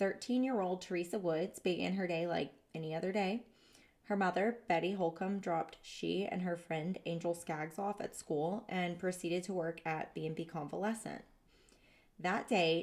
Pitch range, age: 165-200 Hz, 20-39